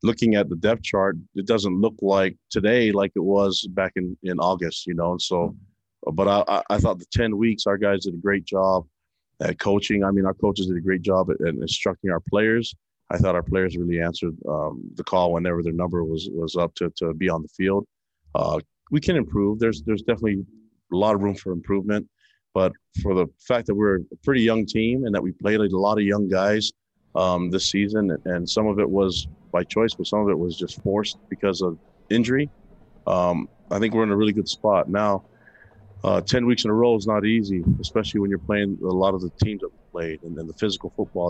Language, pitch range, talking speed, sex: English, 90-105 Hz, 230 wpm, male